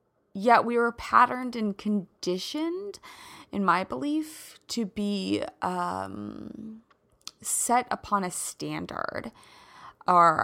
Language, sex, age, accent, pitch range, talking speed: English, female, 20-39, American, 190-260 Hz, 100 wpm